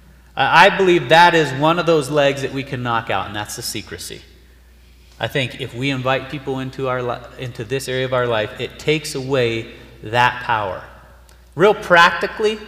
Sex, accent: male, American